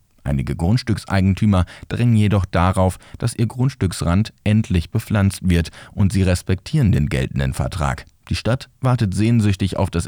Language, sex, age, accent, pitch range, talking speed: German, male, 40-59, German, 90-115 Hz, 135 wpm